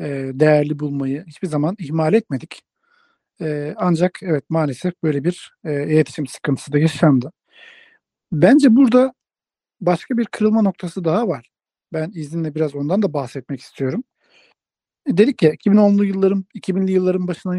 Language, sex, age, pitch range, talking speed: Turkish, male, 50-69, 155-205 Hz, 125 wpm